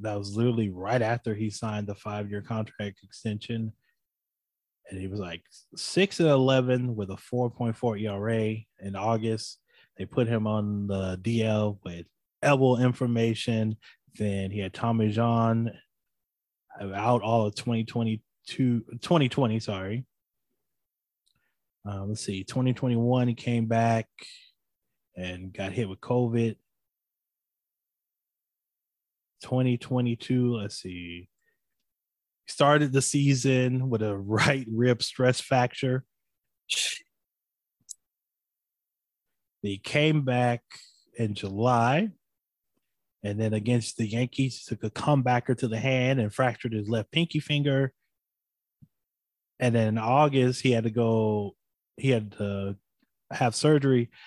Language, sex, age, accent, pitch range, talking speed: English, male, 20-39, American, 105-125 Hz, 115 wpm